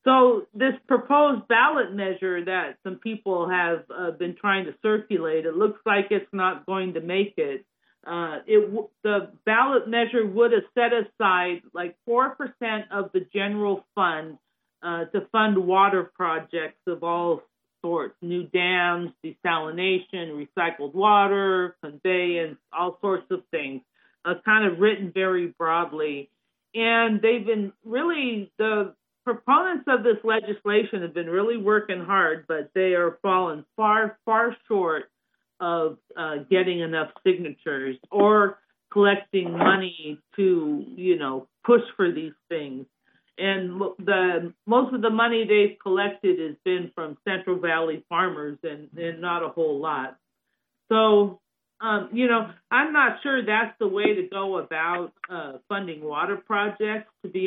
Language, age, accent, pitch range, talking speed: English, 40-59, American, 170-220 Hz, 145 wpm